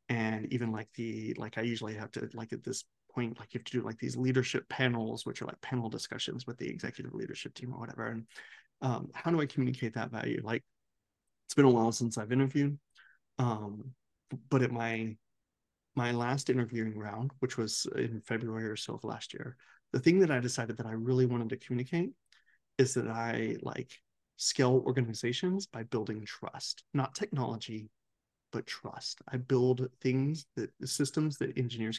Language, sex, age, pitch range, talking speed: English, male, 30-49, 115-135 Hz, 185 wpm